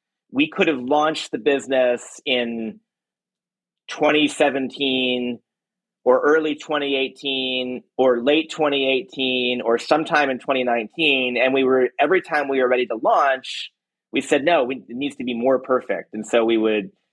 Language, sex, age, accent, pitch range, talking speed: English, male, 30-49, American, 115-140 Hz, 145 wpm